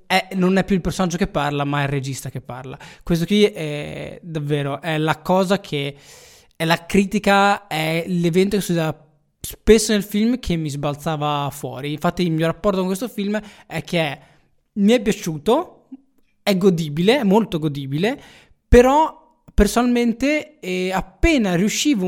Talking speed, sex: 160 wpm, male